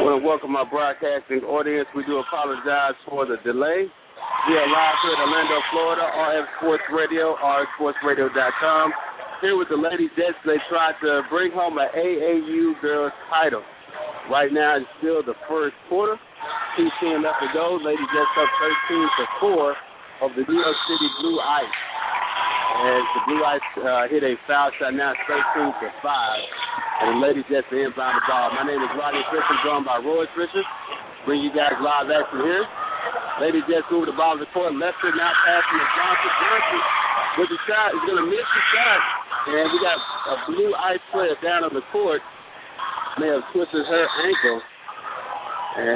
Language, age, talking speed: English, 50-69, 175 wpm